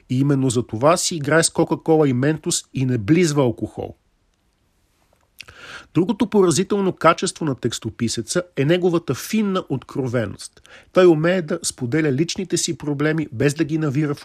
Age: 50-69